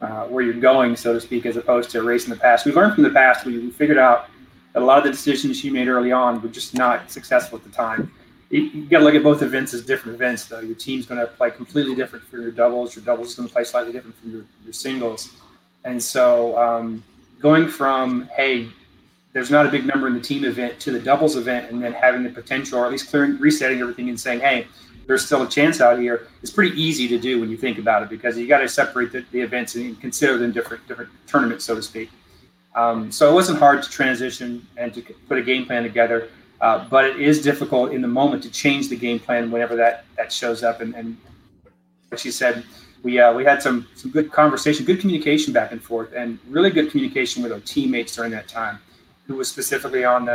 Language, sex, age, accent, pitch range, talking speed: English, male, 30-49, American, 115-135 Hz, 245 wpm